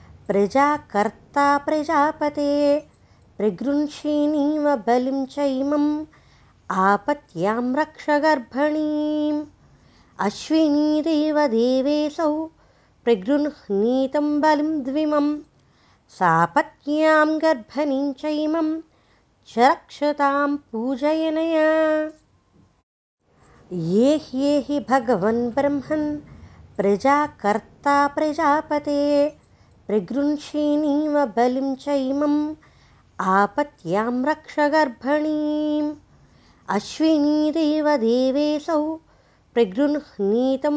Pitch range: 270-300 Hz